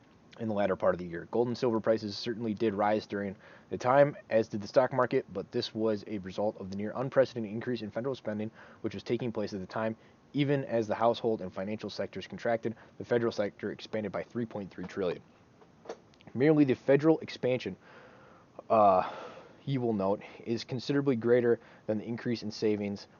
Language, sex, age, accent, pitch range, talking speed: English, male, 20-39, American, 105-120 Hz, 185 wpm